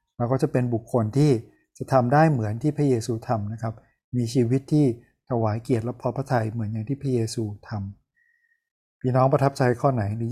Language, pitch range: Thai, 115-140 Hz